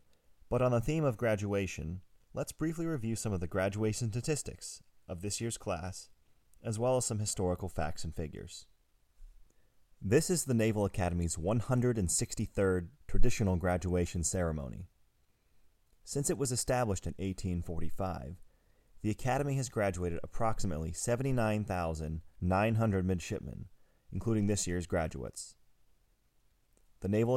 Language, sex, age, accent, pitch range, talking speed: English, male, 30-49, American, 90-115 Hz, 120 wpm